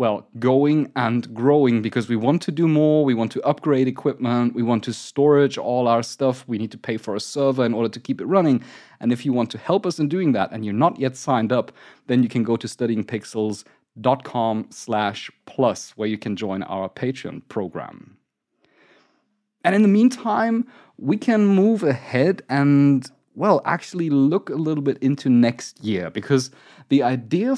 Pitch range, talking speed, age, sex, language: 115-150 Hz, 185 wpm, 30-49, male, English